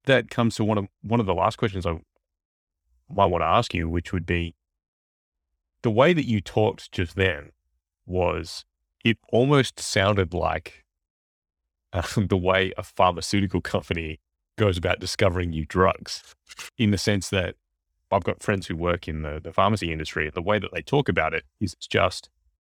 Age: 30-49